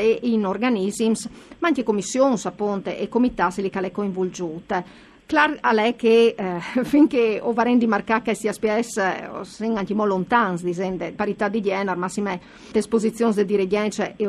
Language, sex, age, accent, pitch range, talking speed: Italian, female, 50-69, native, 190-235 Hz, 165 wpm